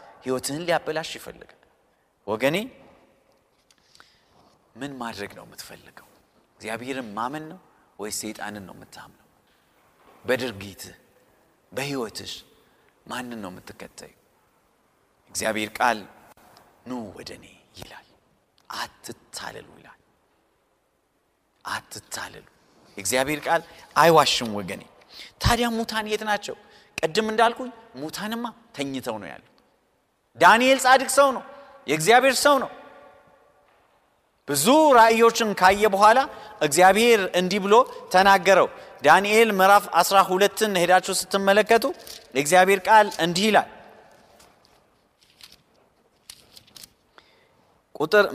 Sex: male